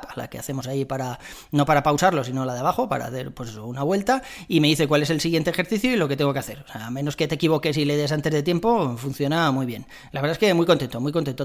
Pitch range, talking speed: 140-185 Hz, 280 wpm